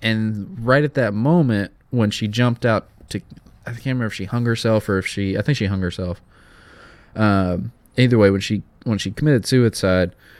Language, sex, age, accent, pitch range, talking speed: English, male, 20-39, American, 95-120 Hz, 210 wpm